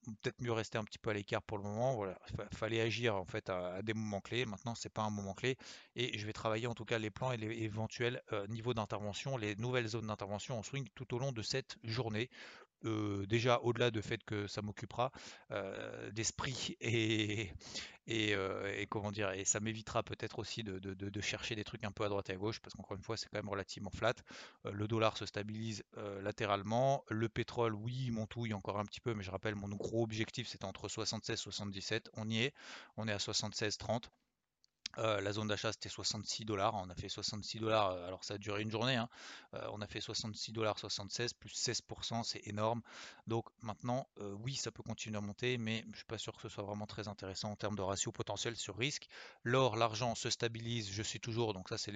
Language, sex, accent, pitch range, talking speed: French, male, French, 105-115 Hz, 230 wpm